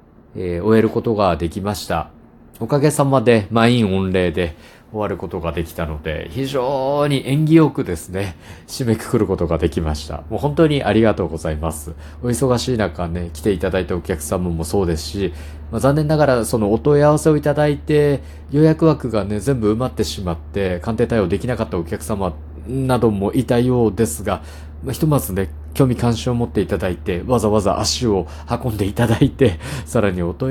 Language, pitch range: Japanese, 85-120 Hz